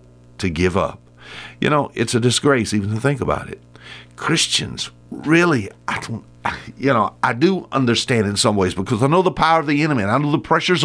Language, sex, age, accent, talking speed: English, male, 60-79, American, 215 wpm